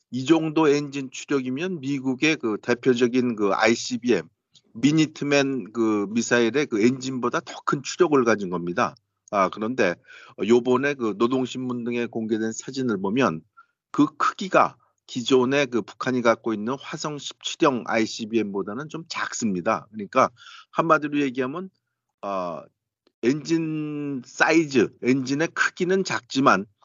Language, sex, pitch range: Korean, male, 115-155 Hz